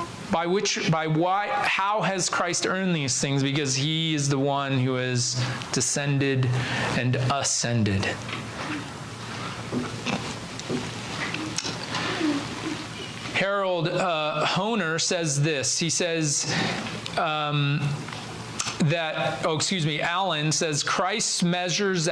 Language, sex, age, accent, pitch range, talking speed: English, male, 30-49, American, 150-195 Hz, 100 wpm